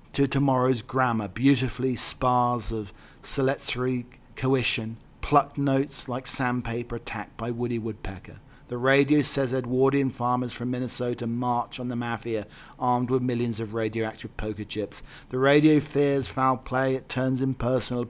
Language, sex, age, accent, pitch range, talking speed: English, male, 40-59, British, 115-130 Hz, 140 wpm